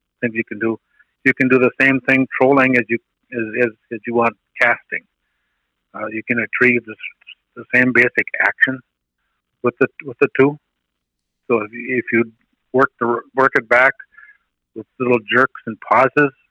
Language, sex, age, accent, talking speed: English, male, 60-79, American, 175 wpm